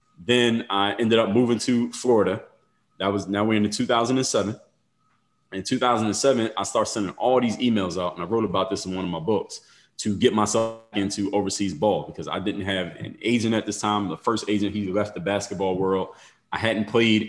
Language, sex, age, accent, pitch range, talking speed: English, male, 20-39, American, 95-115 Hz, 205 wpm